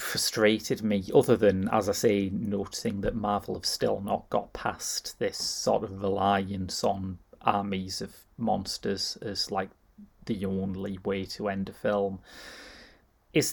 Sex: male